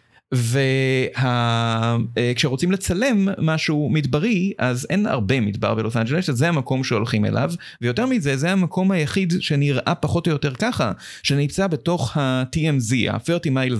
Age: 30-49